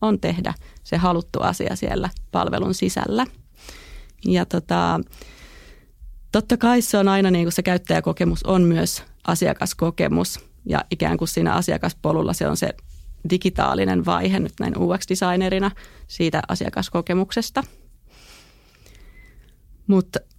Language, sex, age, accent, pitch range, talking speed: Finnish, female, 30-49, native, 170-195 Hz, 110 wpm